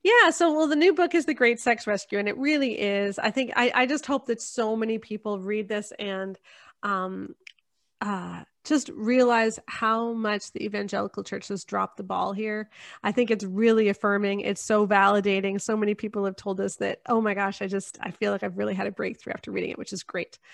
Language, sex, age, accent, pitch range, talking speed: English, female, 30-49, American, 205-260 Hz, 220 wpm